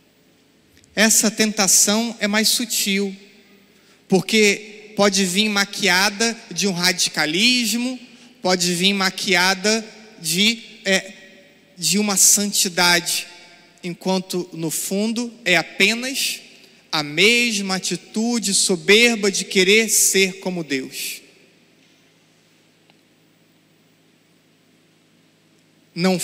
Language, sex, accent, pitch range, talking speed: Portuguese, male, Brazilian, 180-225 Hz, 80 wpm